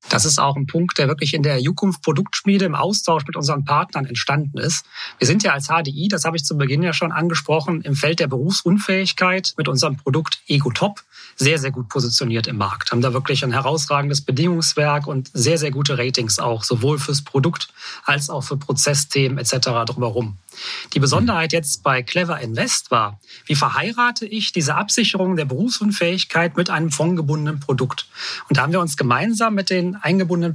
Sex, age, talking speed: male, 30-49, 185 wpm